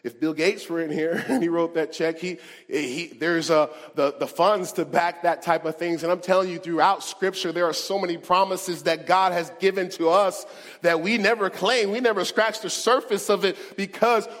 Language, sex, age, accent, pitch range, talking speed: English, male, 30-49, American, 155-255 Hz, 220 wpm